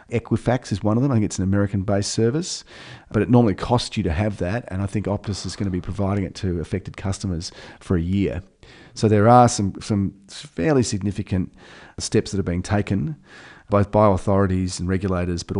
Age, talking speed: 40-59, 205 wpm